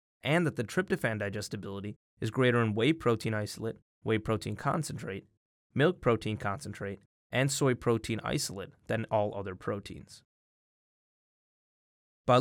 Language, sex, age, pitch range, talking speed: English, male, 20-39, 105-145 Hz, 125 wpm